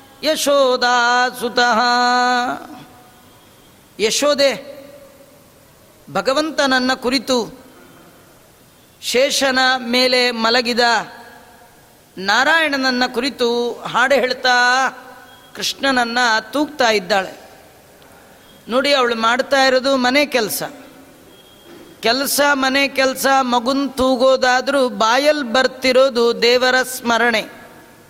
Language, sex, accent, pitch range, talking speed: Kannada, female, native, 240-270 Hz, 65 wpm